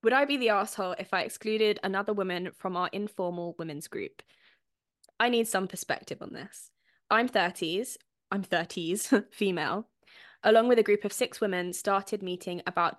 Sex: female